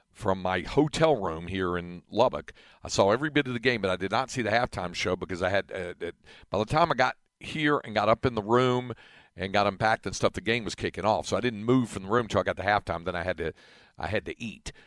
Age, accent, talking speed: 50-69, American, 280 wpm